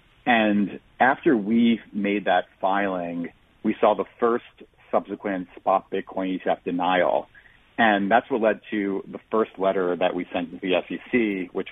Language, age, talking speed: English, 40-59, 155 wpm